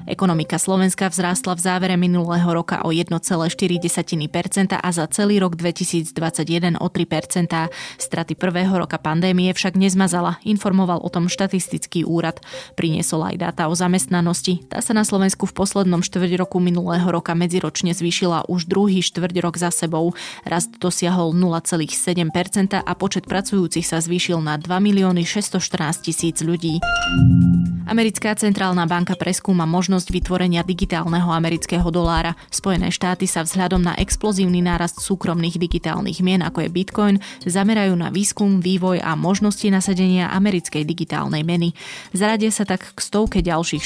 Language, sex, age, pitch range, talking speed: Slovak, female, 20-39, 170-190 Hz, 140 wpm